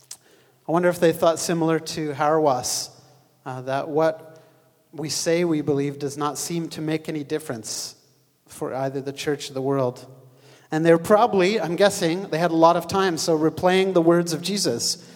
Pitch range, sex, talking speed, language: 150-175 Hz, male, 180 wpm, English